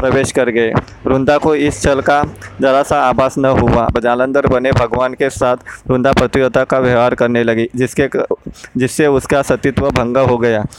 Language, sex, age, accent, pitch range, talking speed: Hindi, male, 20-39, native, 125-135 Hz, 165 wpm